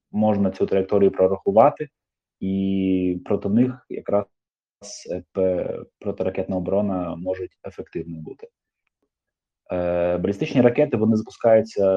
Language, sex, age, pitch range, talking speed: Ukrainian, male, 20-39, 95-125 Hz, 95 wpm